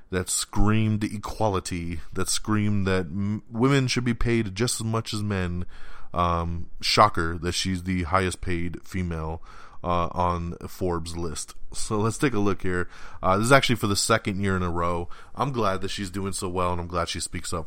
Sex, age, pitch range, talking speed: male, 20-39, 85-110 Hz, 195 wpm